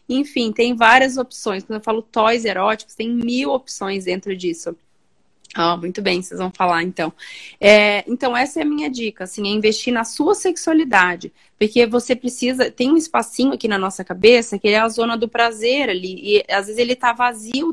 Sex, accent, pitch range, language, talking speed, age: female, Brazilian, 205-255 Hz, Portuguese, 195 wpm, 20-39